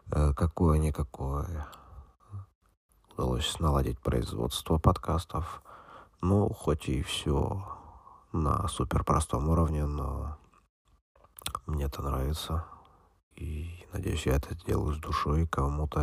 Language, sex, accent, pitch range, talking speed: Russian, male, native, 70-90 Hz, 90 wpm